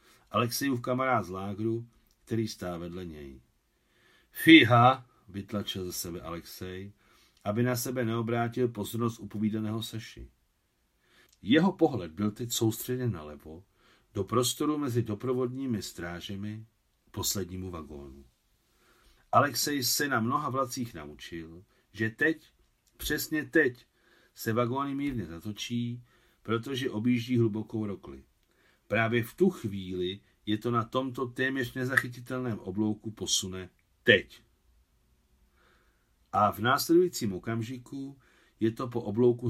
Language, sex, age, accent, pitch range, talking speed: Czech, male, 50-69, native, 95-125 Hz, 110 wpm